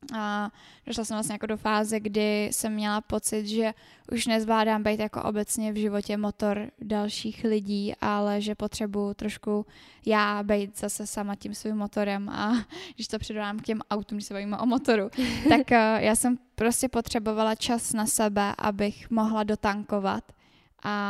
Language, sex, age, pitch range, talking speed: Czech, female, 10-29, 205-220 Hz, 160 wpm